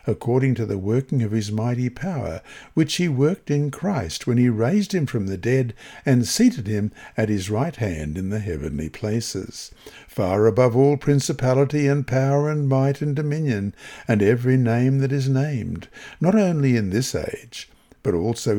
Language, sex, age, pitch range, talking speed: English, male, 60-79, 105-145 Hz, 175 wpm